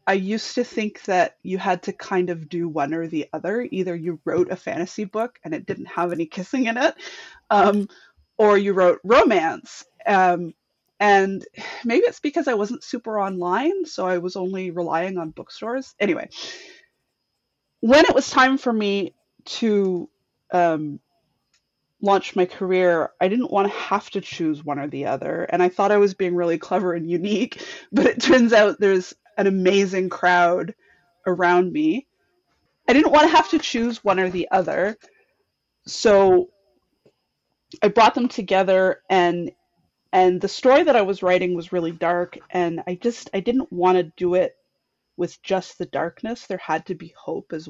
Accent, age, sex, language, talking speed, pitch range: American, 20-39, female, English, 175 wpm, 175-220 Hz